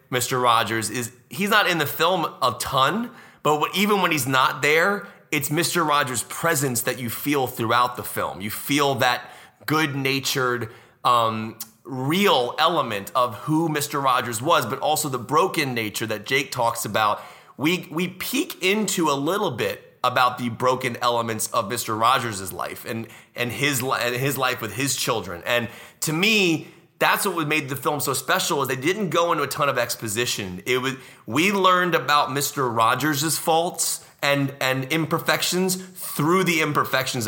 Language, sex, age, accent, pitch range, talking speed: English, male, 30-49, American, 120-160 Hz, 165 wpm